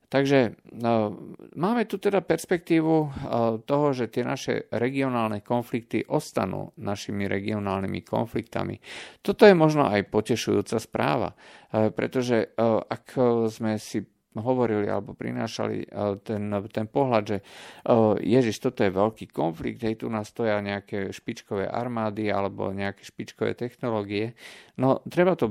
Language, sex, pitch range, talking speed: Slovak, male, 100-120 Hz, 130 wpm